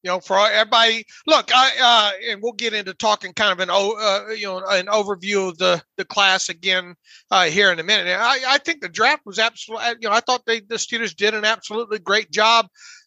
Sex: male